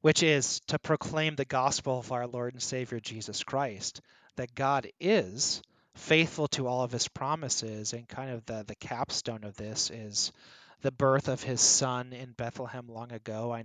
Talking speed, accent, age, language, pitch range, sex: 180 wpm, American, 30-49, English, 115-145 Hz, male